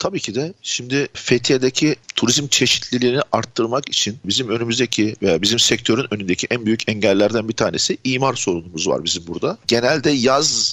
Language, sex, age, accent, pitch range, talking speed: Turkish, male, 50-69, native, 105-125 Hz, 150 wpm